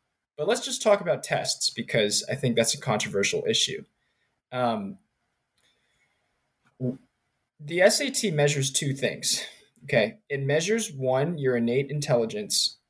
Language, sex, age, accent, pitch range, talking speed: English, male, 20-39, American, 125-155 Hz, 120 wpm